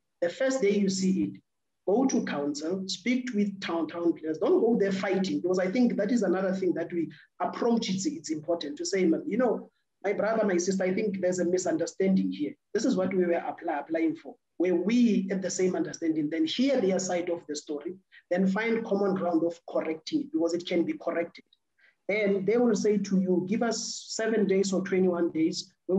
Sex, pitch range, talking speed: male, 175-210 Hz, 210 wpm